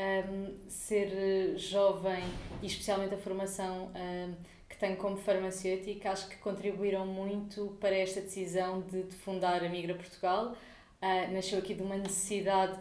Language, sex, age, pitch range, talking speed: Portuguese, female, 20-39, 190-210 Hz, 145 wpm